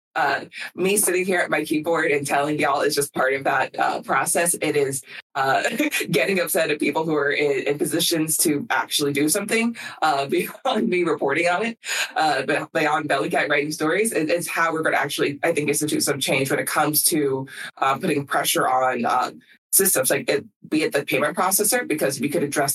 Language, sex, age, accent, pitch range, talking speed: English, female, 20-39, American, 145-185 Hz, 200 wpm